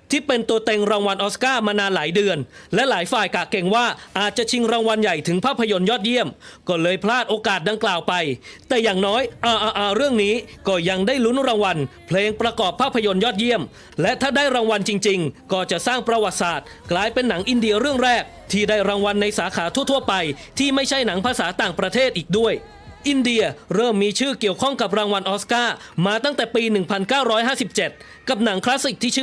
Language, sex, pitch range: English, male, 200-240 Hz